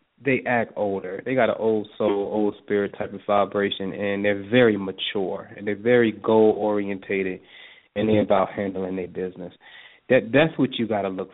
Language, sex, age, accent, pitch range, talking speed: English, male, 20-39, American, 95-110 Hz, 185 wpm